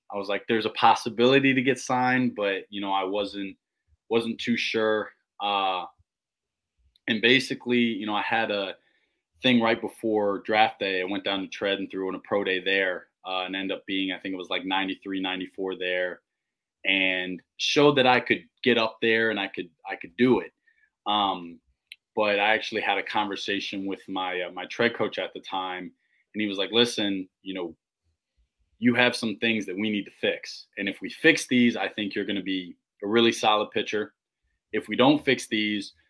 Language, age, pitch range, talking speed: English, 20-39, 95-115 Hz, 205 wpm